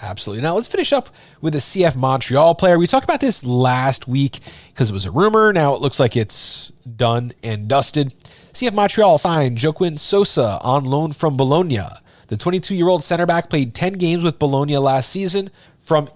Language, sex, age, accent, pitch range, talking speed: English, male, 30-49, American, 125-175 Hz, 185 wpm